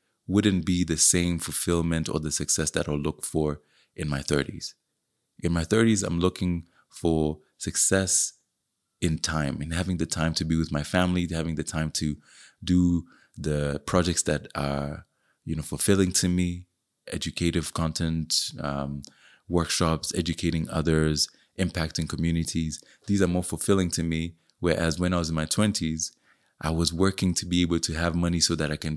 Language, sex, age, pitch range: English, male, 20-39, 80-90 Hz